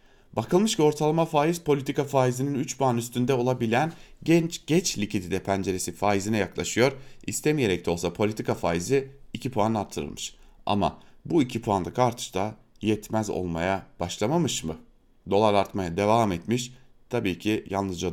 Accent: Turkish